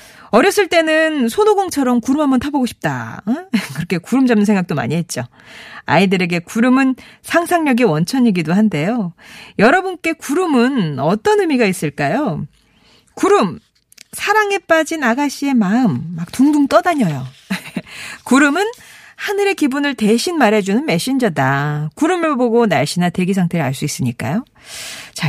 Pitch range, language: 185-295 Hz, Korean